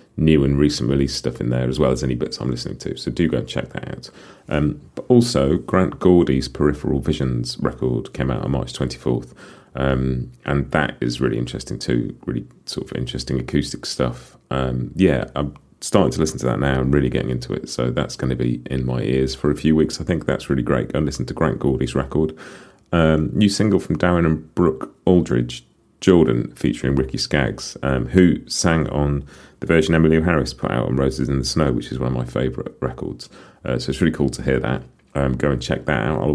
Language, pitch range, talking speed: English, 65-90 Hz, 225 wpm